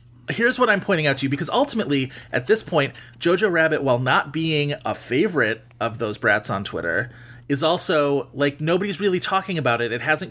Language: English